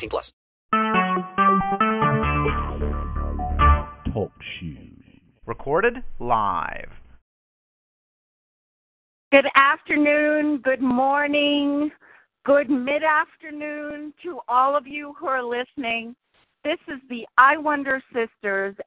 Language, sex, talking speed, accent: English, female, 70 wpm, American